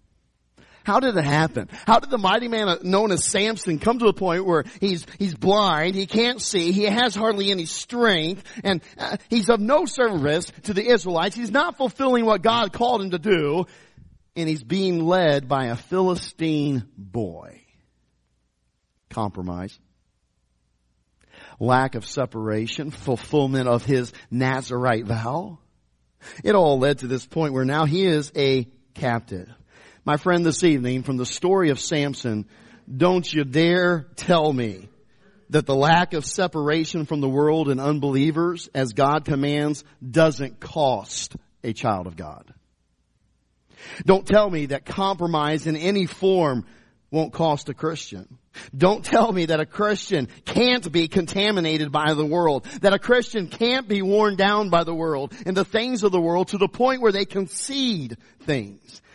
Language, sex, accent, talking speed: English, male, American, 155 wpm